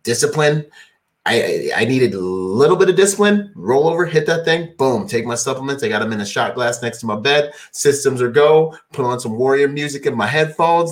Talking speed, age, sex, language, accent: 225 wpm, 30-49, male, English, American